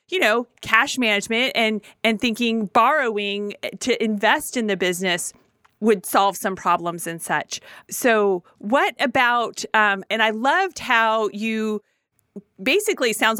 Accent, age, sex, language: American, 30-49, female, English